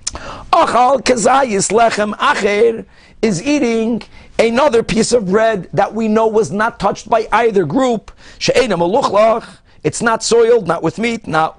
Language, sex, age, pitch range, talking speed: English, male, 50-69, 160-220 Hz, 130 wpm